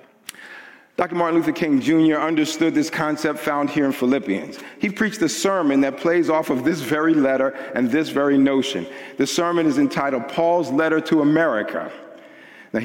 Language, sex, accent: English, male, American